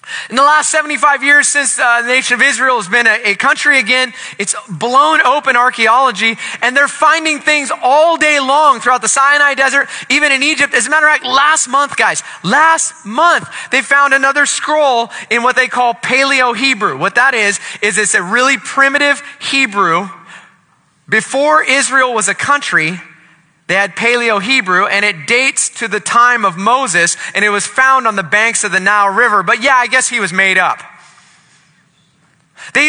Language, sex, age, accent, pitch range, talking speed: English, male, 20-39, American, 200-280 Hz, 180 wpm